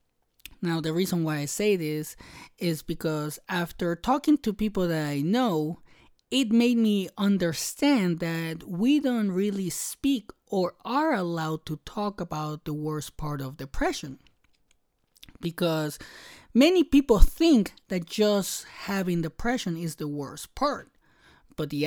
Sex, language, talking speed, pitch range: male, English, 135 wpm, 155-205 Hz